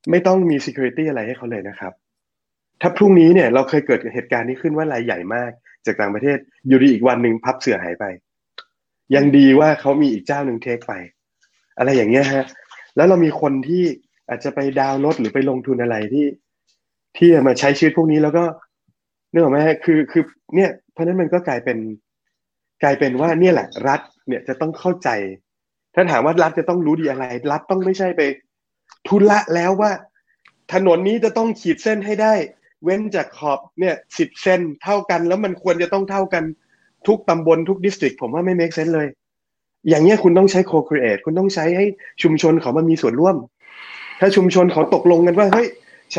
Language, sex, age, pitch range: Thai, male, 20-39, 140-185 Hz